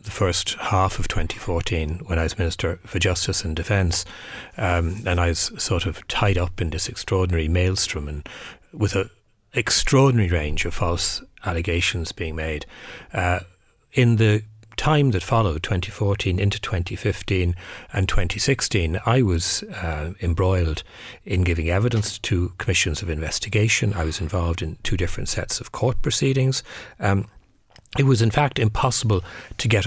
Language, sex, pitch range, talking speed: English, male, 90-110 Hz, 150 wpm